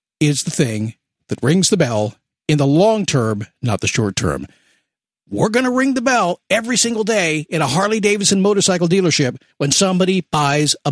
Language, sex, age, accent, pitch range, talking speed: English, male, 50-69, American, 155-225 Hz, 180 wpm